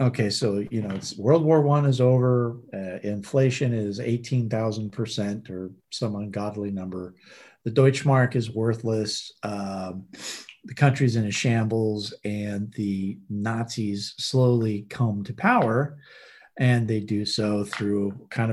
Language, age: English, 50-69